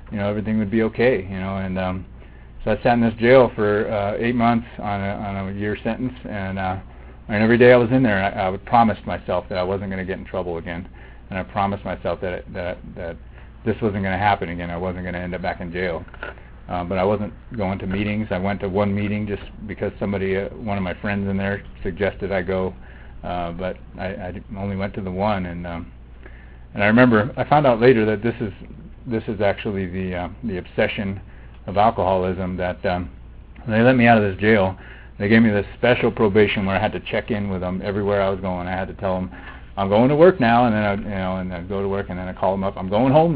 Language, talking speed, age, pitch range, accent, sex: English, 250 wpm, 30-49, 90-110 Hz, American, male